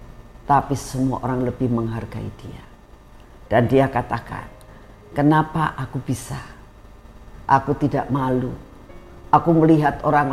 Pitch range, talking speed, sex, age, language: 125-180 Hz, 105 wpm, female, 50-69, Indonesian